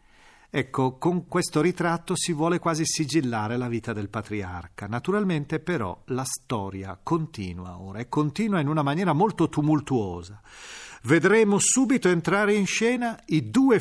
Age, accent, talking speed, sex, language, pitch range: 40-59, native, 140 wpm, male, Italian, 125-175 Hz